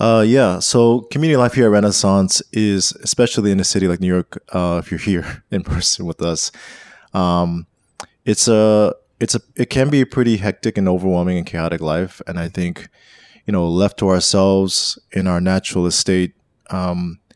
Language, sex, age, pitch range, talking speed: English, male, 20-39, 90-105 Hz, 185 wpm